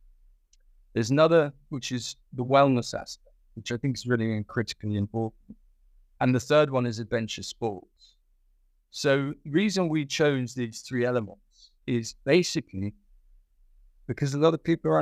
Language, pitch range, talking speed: English, 100-130 Hz, 150 wpm